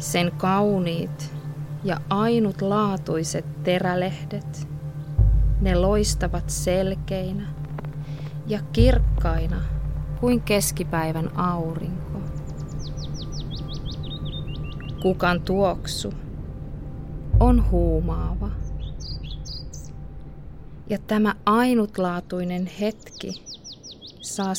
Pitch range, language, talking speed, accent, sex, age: 150-190 Hz, Finnish, 55 wpm, native, female, 30-49